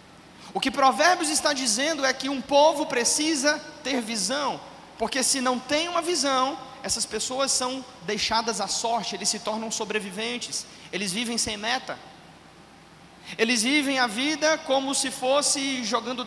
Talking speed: 150 wpm